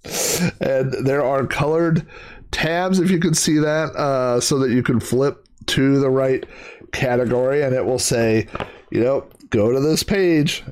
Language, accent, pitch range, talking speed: English, American, 115-170 Hz, 170 wpm